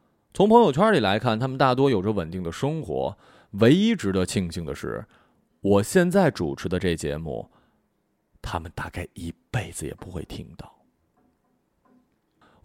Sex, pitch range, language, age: male, 90-125 Hz, Chinese, 20-39